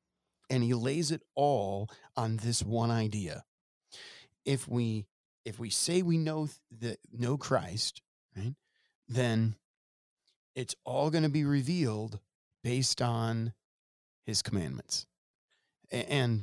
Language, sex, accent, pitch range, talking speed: English, male, American, 100-130 Hz, 115 wpm